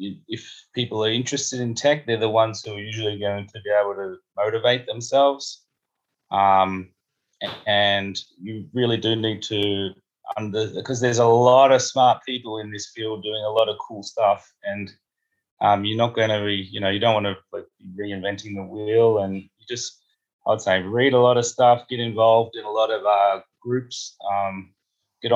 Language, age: English, 20-39